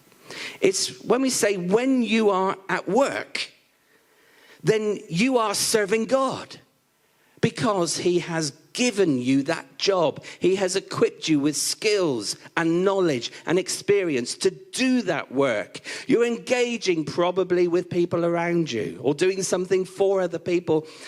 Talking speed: 135 wpm